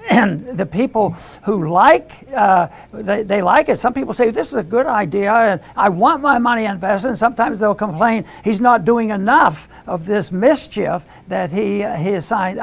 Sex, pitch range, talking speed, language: male, 195-235 Hz, 195 wpm, English